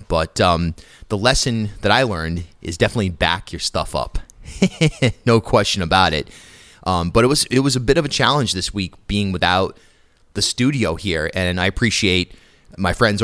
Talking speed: 180 wpm